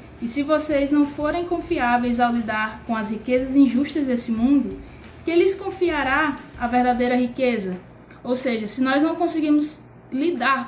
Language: Portuguese